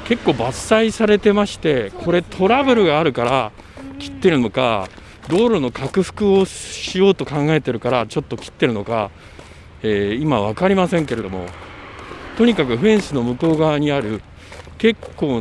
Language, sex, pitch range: Japanese, male, 95-155 Hz